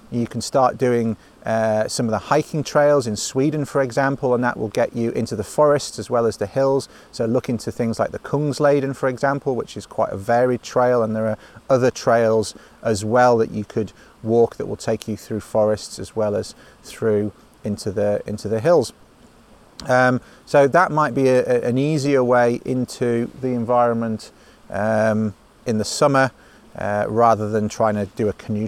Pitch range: 110-130 Hz